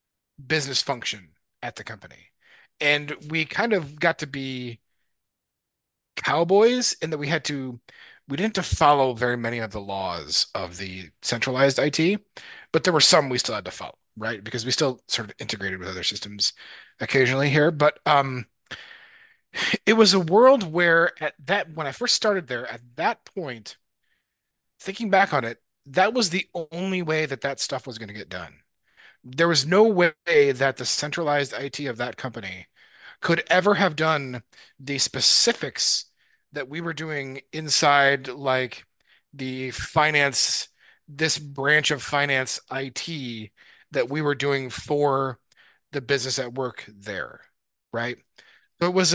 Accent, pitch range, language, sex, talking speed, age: American, 125-165 Hz, English, male, 160 wpm, 30-49